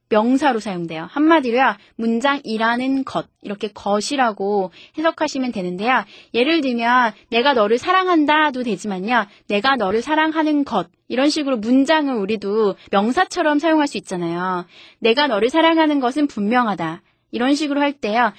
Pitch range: 205-290 Hz